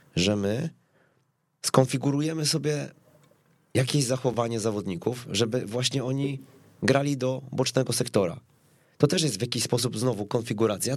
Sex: male